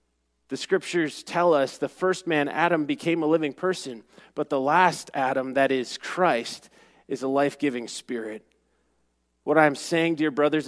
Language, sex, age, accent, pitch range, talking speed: English, male, 30-49, American, 140-180 Hz, 165 wpm